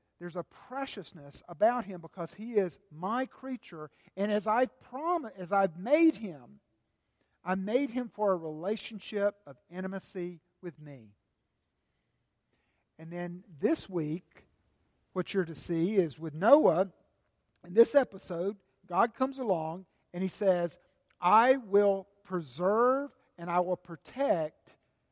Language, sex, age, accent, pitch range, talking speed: English, male, 50-69, American, 165-210 Hz, 130 wpm